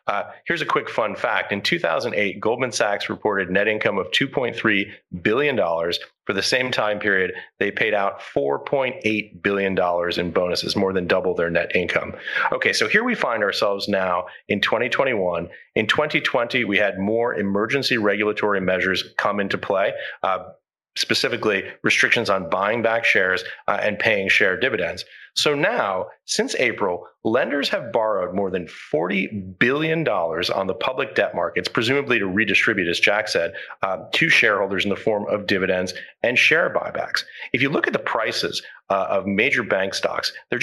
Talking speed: 165 wpm